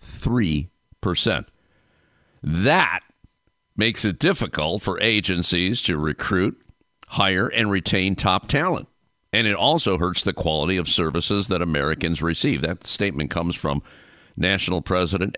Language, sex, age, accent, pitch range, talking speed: English, male, 50-69, American, 75-100 Hz, 120 wpm